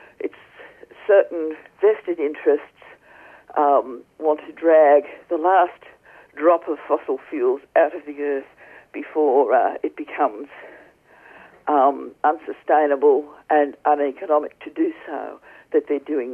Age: 50-69